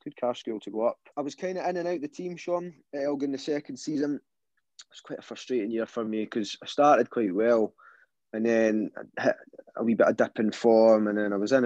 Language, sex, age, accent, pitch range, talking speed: English, male, 20-39, British, 105-130 Hz, 250 wpm